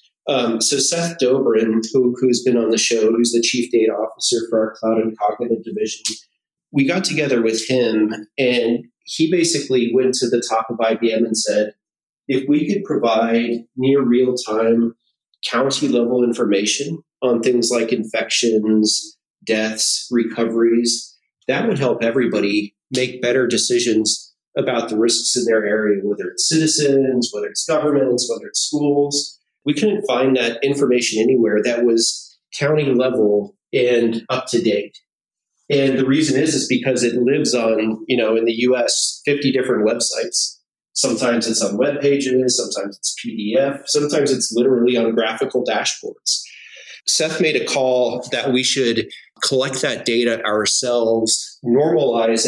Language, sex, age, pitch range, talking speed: English, male, 30-49, 115-135 Hz, 145 wpm